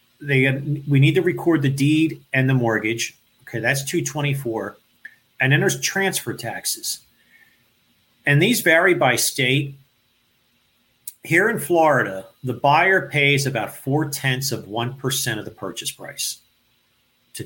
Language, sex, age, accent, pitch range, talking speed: English, male, 50-69, American, 120-145 Hz, 140 wpm